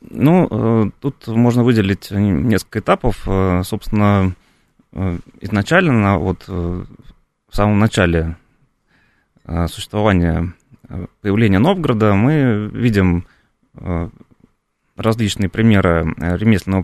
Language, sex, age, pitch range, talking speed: Russian, male, 30-49, 90-120 Hz, 70 wpm